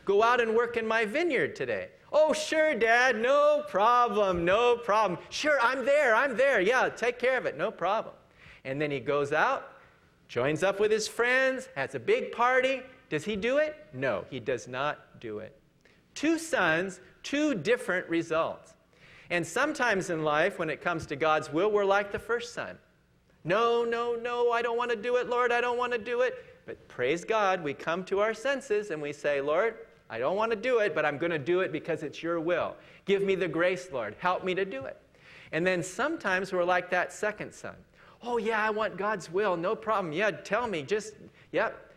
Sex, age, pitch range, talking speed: male, 40-59, 175-255 Hz, 210 wpm